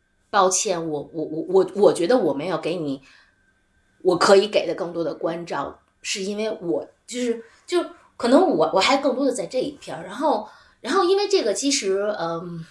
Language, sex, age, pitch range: Chinese, female, 20-39, 170-250 Hz